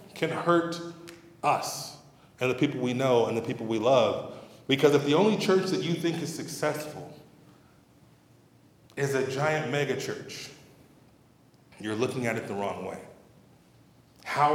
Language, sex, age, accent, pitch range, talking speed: English, male, 20-39, American, 125-165 Hz, 150 wpm